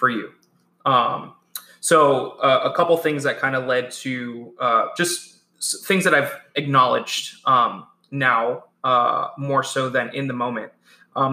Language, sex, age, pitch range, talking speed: English, male, 20-39, 125-145 Hz, 160 wpm